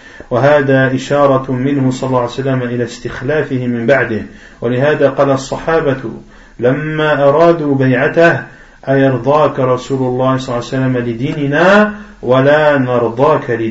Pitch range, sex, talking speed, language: 125-150 Hz, male, 55 wpm, French